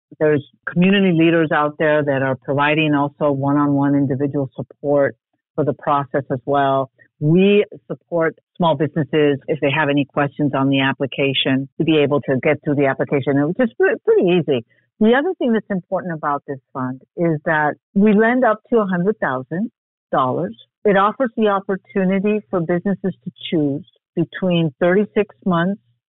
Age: 50-69